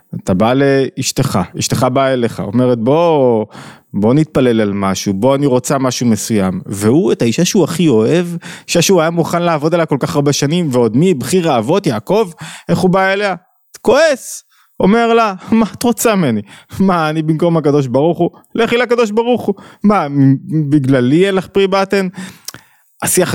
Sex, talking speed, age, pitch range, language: male, 165 wpm, 20-39, 130-180 Hz, Hebrew